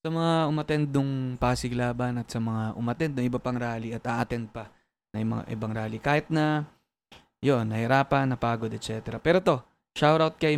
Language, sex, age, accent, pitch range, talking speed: Filipino, male, 20-39, native, 120-140 Hz, 175 wpm